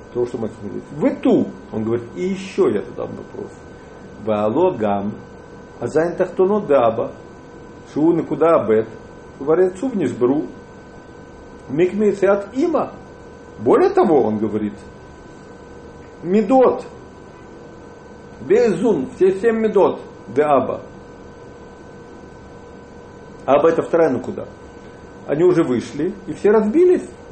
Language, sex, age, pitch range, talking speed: English, male, 50-69, 125-205 Hz, 105 wpm